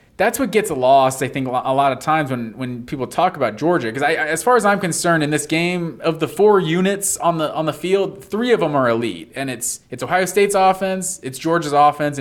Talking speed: 235 wpm